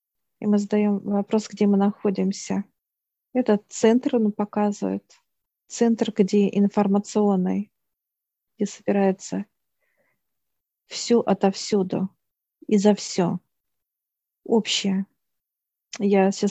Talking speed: 85 wpm